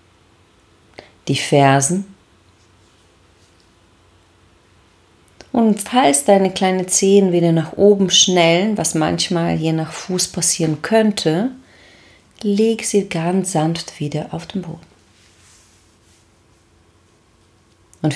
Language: German